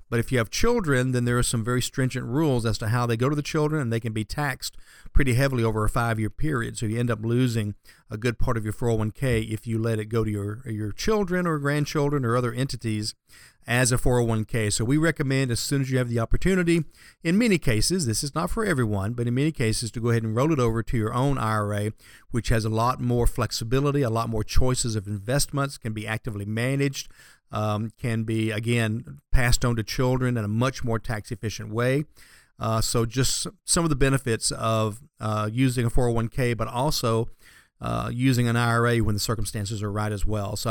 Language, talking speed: English, 220 wpm